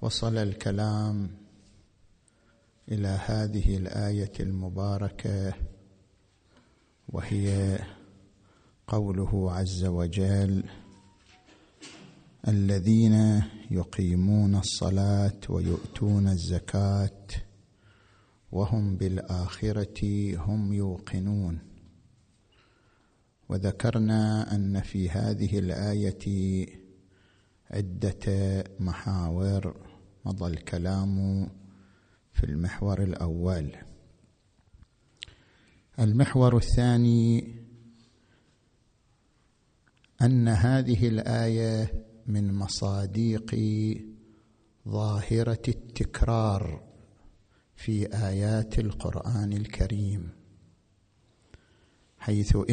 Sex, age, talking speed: male, 50-69, 50 wpm